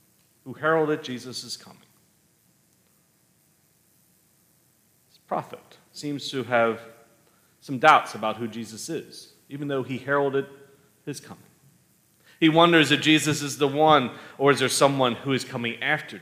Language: English